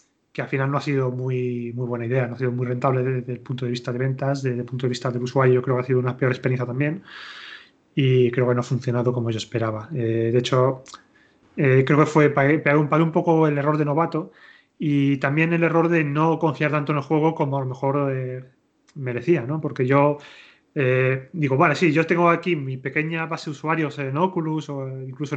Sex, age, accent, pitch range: male, 30-49, Spanish, 130-155 Hz